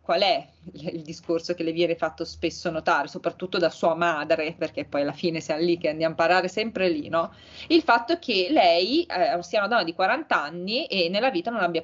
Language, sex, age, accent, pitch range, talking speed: Italian, female, 20-39, native, 165-220 Hz, 220 wpm